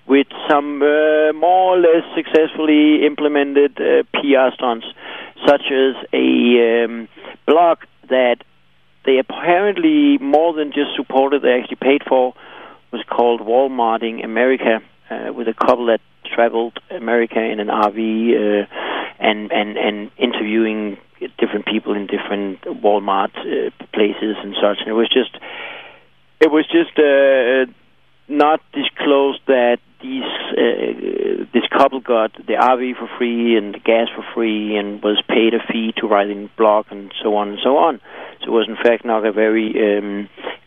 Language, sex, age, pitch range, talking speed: English, male, 60-79, 110-145 Hz, 150 wpm